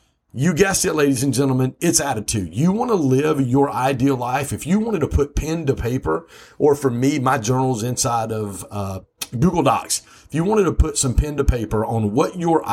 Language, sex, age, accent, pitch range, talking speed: English, male, 50-69, American, 105-145 Hz, 210 wpm